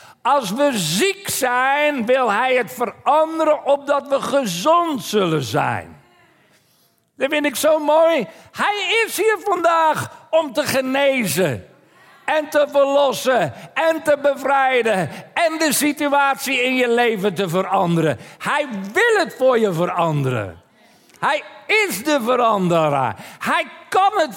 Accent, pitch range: Dutch, 175-275 Hz